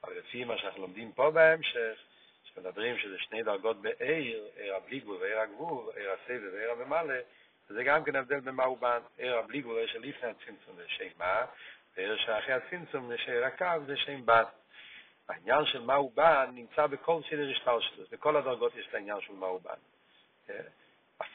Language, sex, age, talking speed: Hebrew, male, 60-79, 95 wpm